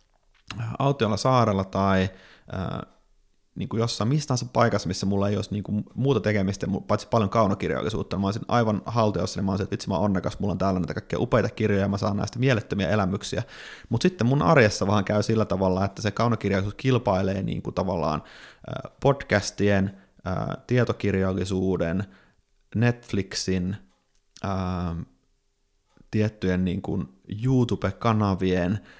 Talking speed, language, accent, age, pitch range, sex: 145 wpm, Finnish, native, 30-49, 95-115 Hz, male